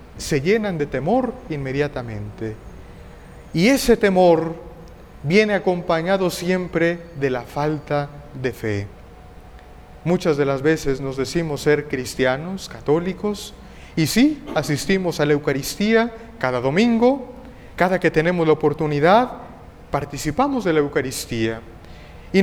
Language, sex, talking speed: Spanish, male, 115 wpm